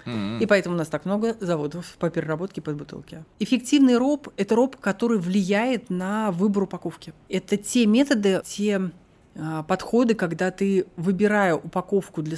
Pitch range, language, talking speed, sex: 160-205 Hz, Russian, 150 wpm, female